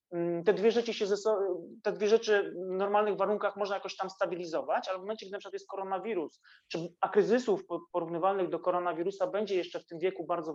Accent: native